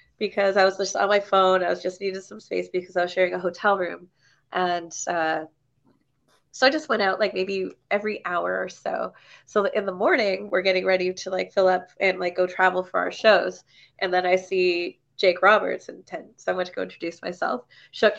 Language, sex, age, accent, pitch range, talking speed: English, female, 20-39, American, 190-260 Hz, 220 wpm